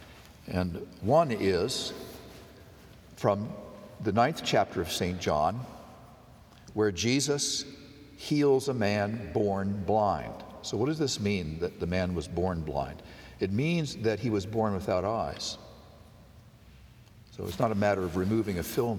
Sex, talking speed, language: male, 140 wpm, English